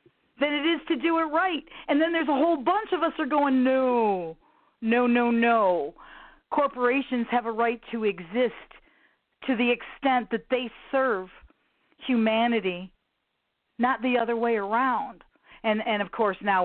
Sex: female